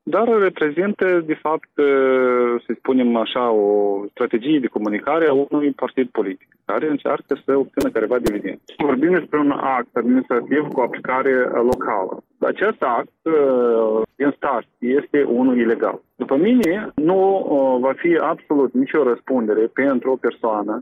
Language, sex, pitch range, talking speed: Romanian, male, 120-155 Hz, 135 wpm